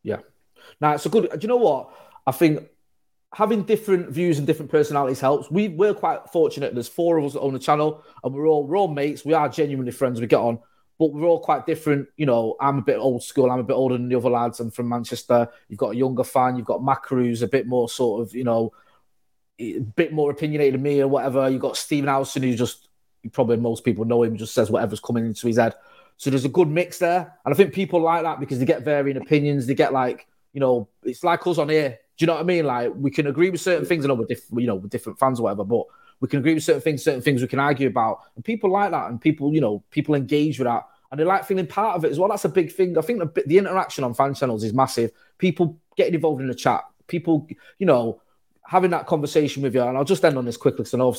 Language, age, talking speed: English, 20-39, 265 wpm